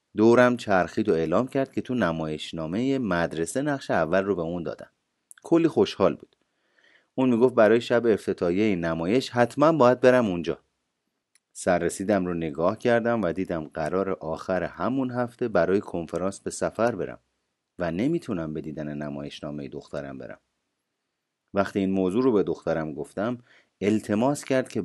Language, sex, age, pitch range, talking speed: Persian, male, 30-49, 85-120 Hz, 150 wpm